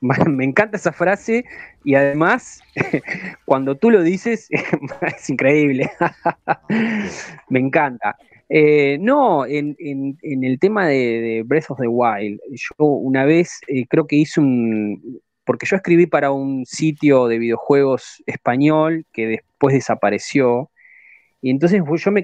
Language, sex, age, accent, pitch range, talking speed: Spanish, male, 20-39, Argentinian, 135-185 Hz, 130 wpm